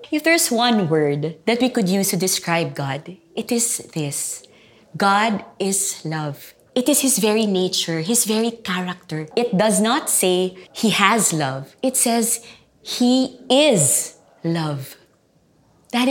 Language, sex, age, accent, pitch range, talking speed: English, female, 20-39, Filipino, 180-230 Hz, 140 wpm